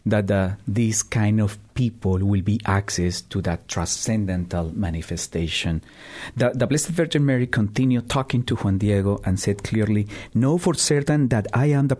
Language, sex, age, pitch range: English, male, 50-69, 100-145 Hz